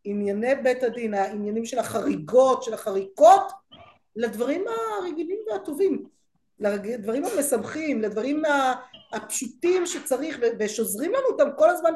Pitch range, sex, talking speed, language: 195-275 Hz, female, 105 wpm, Hebrew